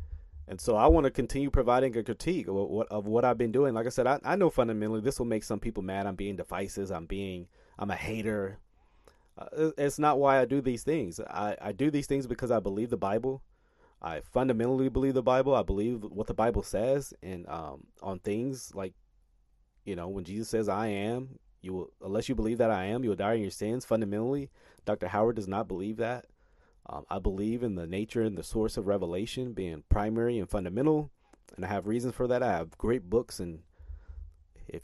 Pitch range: 95-125 Hz